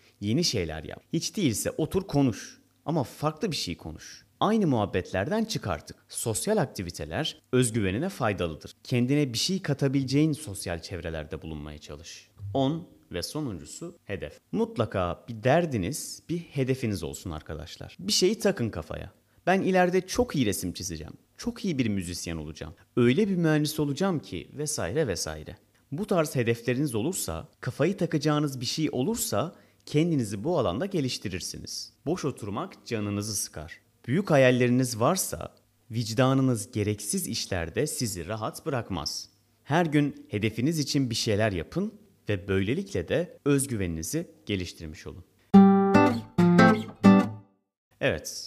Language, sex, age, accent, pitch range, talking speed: Turkish, male, 30-49, native, 95-150 Hz, 125 wpm